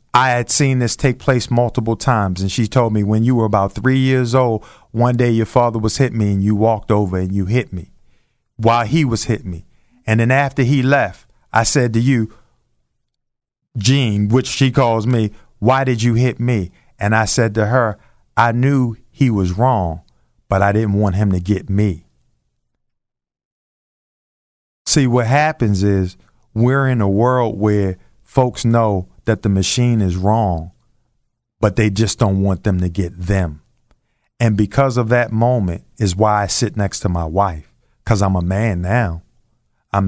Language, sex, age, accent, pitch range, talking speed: English, male, 40-59, American, 100-120 Hz, 180 wpm